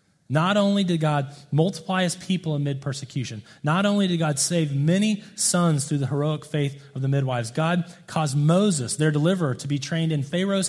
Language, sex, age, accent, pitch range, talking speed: English, male, 30-49, American, 145-190 Hz, 185 wpm